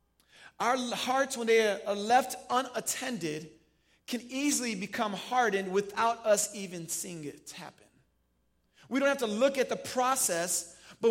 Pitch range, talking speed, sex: 170-265 Hz, 140 wpm, male